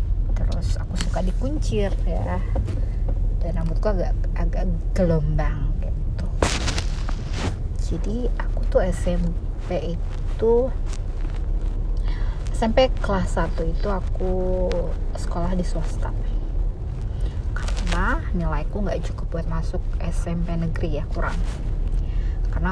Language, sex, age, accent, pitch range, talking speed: Indonesian, female, 30-49, native, 85-100 Hz, 85 wpm